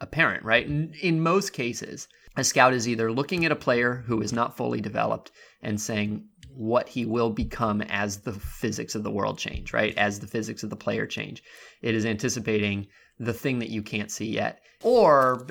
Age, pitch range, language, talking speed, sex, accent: 20-39, 105-125 Hz, English, 195 wpm, male, American